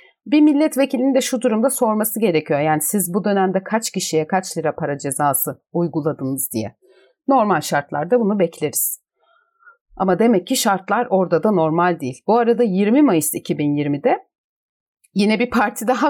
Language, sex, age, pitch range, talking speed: Turkish, female, 30-49, 160-235 Hz, 150 wpm